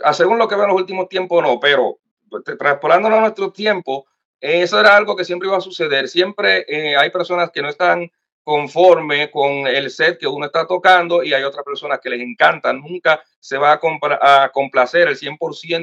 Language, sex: Spanish, male